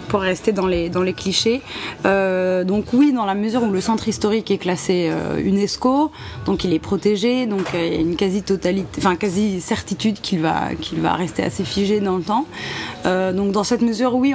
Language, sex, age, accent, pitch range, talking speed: French, female, 20-39, French, 170-210 Hz, 215 wpm